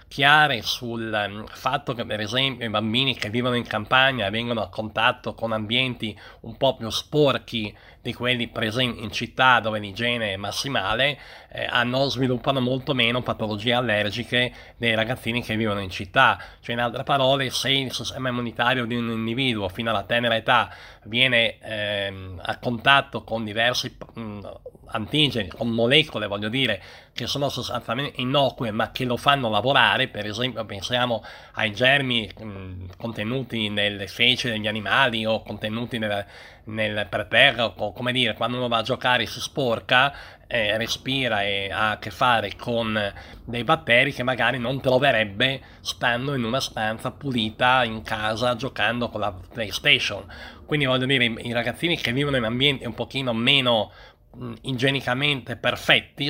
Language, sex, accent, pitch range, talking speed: Italian, male, native, 110-130 Hz, 155 wpm